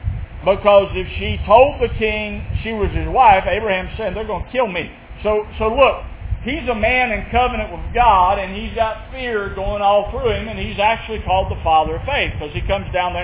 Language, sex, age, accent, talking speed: English, male, 50-69, American, 220 wpm